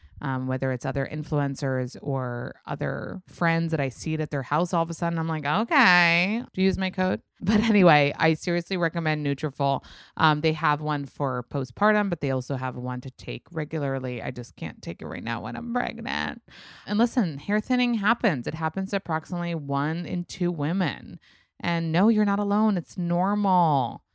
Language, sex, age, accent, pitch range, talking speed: English, female, 20-39, American, 140-190 Hz, 190 wpm